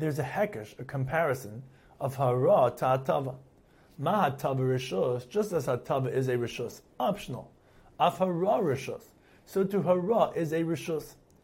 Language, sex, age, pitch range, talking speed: English, male, 30-49, 130-175 Hz, 135 wpm